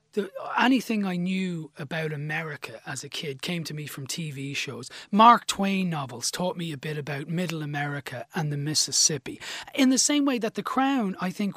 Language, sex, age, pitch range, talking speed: English, male, 30-49, 150-200 Hz, 190 wpm